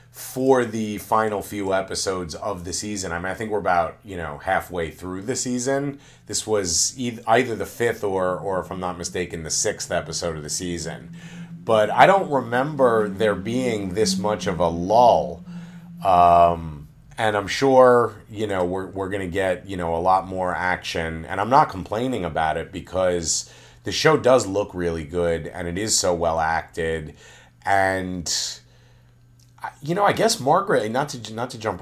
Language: English